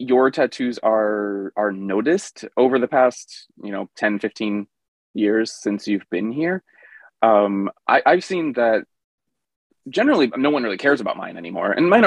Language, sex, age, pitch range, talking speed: English, male, 20-39, 100-130 Hz, 155 wpm